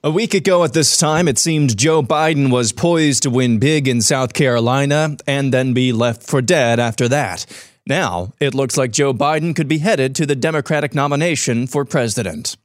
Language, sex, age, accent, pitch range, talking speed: English, male, 20-39, American, 125-155 Hz, 195 wpm